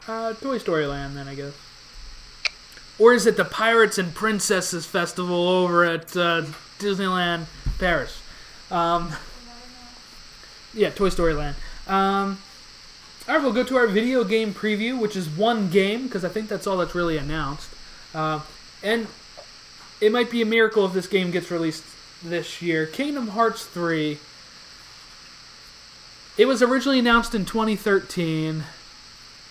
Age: 20-39